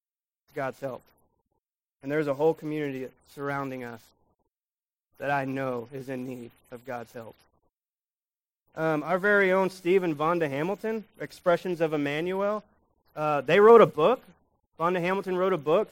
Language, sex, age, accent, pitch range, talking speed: English, male, 20-39, American, 140-175 Hz, 145 wpm